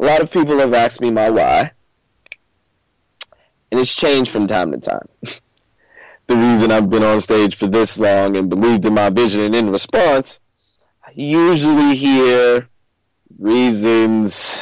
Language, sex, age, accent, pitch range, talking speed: English, male, 30-49, American, 105-145 Hz, 150 wpm